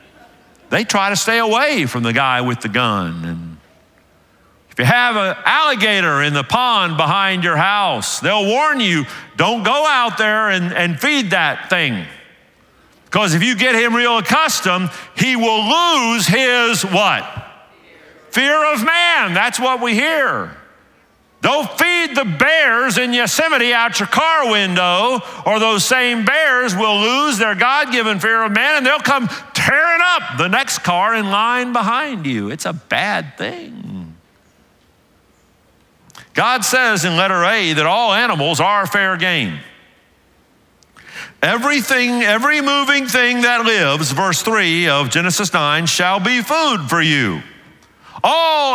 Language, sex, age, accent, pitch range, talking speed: English, male, 50-69, American, 185-255 Hz, 145 wpm